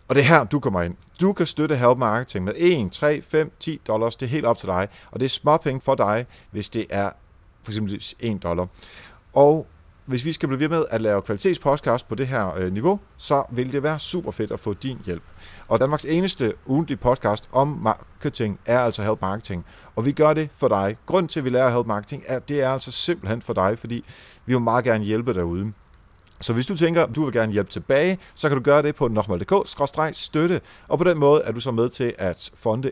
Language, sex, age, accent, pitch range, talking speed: Danish, male, 30-49, native, 100-145 Hz, 225 wpm